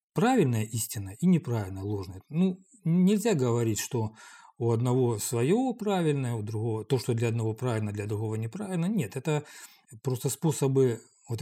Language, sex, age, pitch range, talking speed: Russian, male, 40-59, 110-150 Hz, 145 wpm